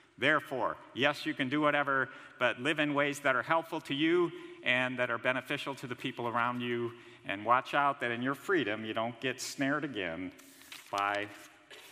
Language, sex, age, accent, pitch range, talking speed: English, male, 50-69, American, 130-155 Hz, 185 wpm